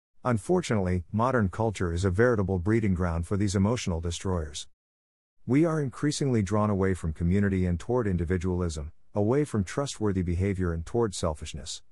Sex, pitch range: male, 90-115 Hz